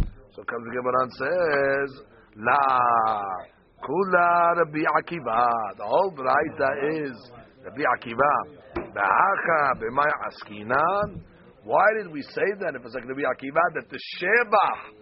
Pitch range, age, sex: 135-195 Hz, 60-79, male